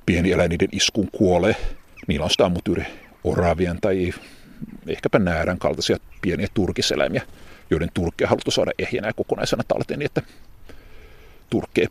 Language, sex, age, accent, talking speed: Finnish, male, 50-69, native, 120 wpm